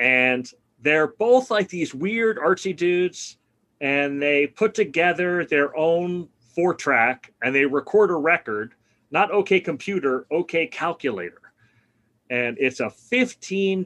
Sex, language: male, English